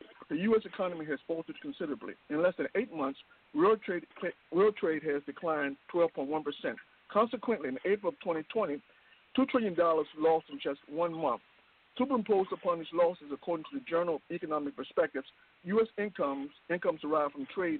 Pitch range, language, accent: 155-225 Hz, English, American